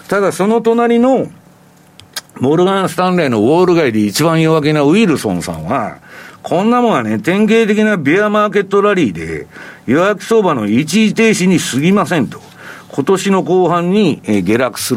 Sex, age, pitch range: male, 50-69, 145-225 Hz